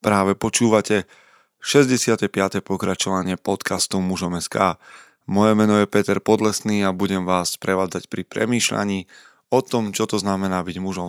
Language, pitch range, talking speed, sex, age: Slovak, 95-115 Hz, 130 wpm, male, 20-39